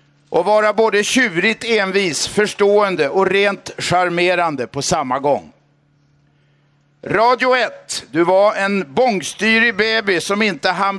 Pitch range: 170-215 Hz